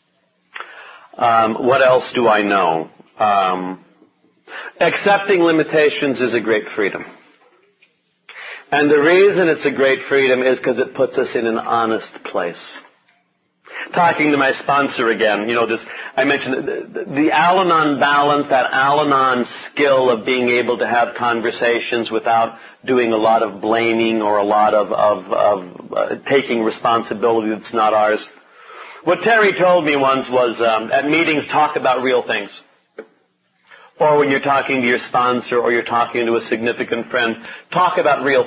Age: 40-59